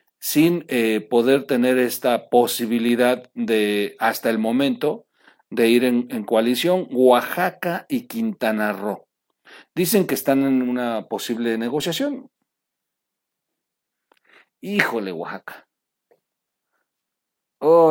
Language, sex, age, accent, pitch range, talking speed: Spanish, male, 50-69, Mexican, 110-155 Hz, 95 wpm